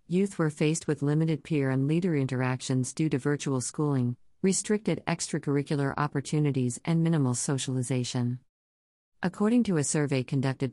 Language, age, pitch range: English, 50-69, 130-155 Hz